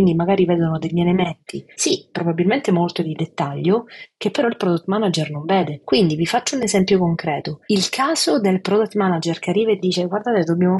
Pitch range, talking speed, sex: 165-195 Hz, 185 wpm, female